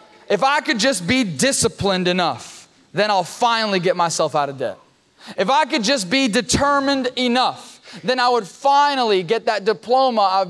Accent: American